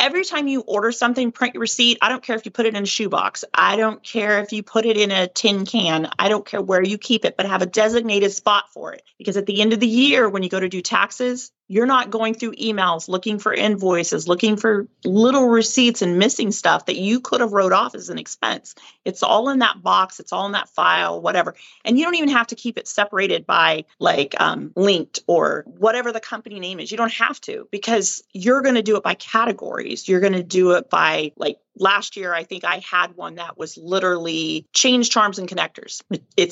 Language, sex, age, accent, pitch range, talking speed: English, female, 40-59, American, 185-230 Hz, 235 wpm